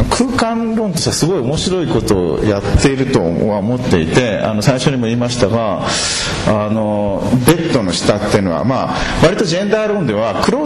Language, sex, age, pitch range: Japanese, male, 40-59, 105-160 Hz